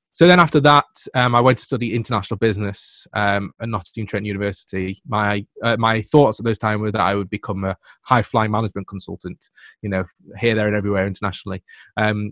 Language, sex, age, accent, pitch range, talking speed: English, male, 20-39, British, 100-120 Hz, 195 wpm